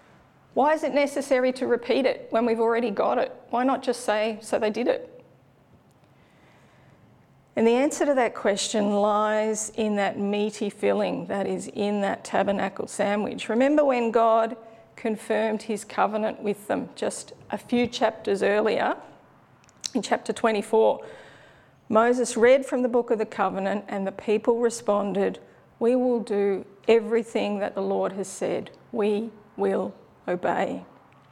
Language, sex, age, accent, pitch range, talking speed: English, female, 40-59, Australian, 205-245 Hz, 150 wpm